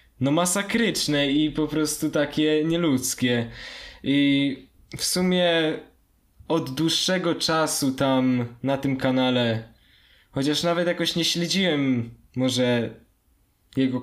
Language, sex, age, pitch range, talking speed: Polish, male, 10-29, 125-155 Hz, 105 wpm